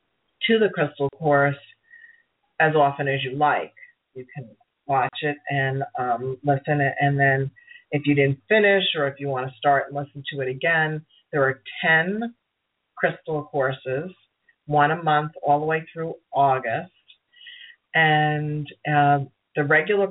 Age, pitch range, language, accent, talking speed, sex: 40-59, 140-175 Hz, English, American, 145 wpm, female